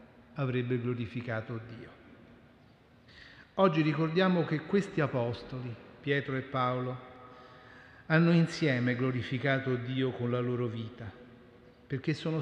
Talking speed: 100 wpm